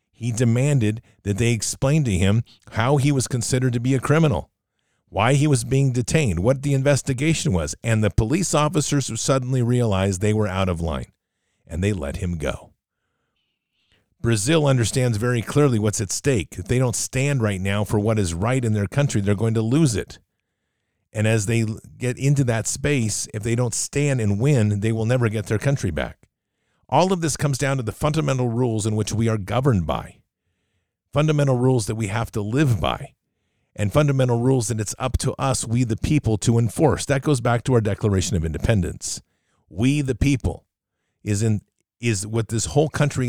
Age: 50-69